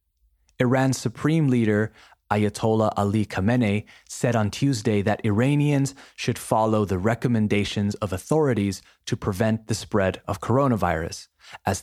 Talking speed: 120 wpm